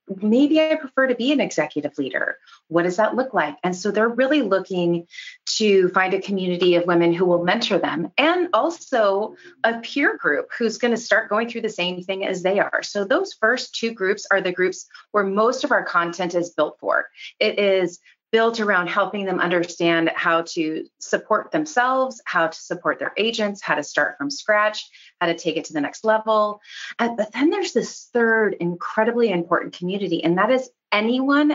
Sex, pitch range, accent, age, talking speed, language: female, 170-230 Hz, American, 30-49, 195 wpm, English